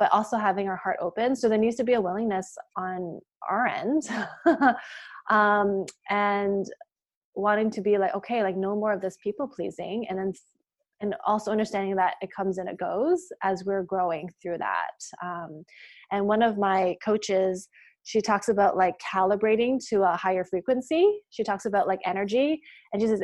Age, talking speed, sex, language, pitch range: 20-39, 180 wpm, female, English, 195-240 Hz